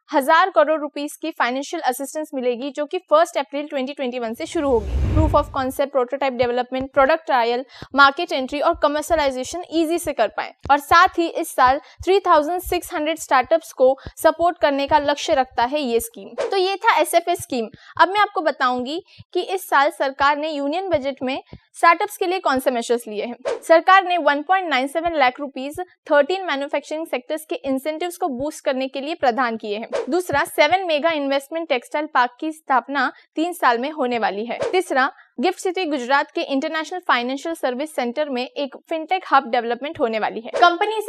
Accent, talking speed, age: native, 175 wpm, 20-39